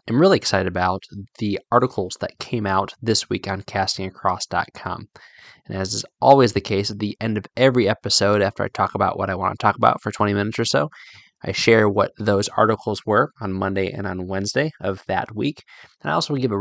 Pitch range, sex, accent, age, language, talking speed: 95-120 Hz, male, American, 20-39, English, 215 wpm